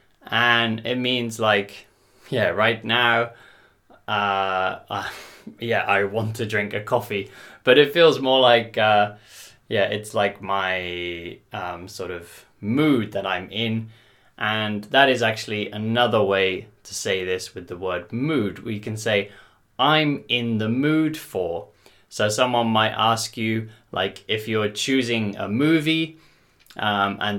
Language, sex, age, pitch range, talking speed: English, male, 20-39, 100-120 Hz, 145 wpm